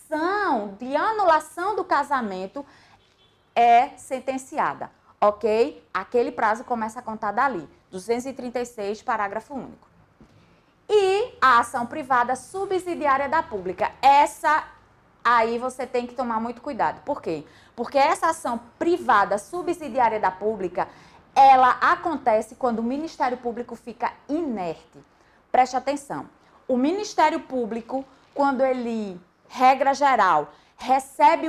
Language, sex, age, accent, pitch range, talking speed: Portuguese, female, 20-39, Brazilian, 230-295 Hz, 110 wpm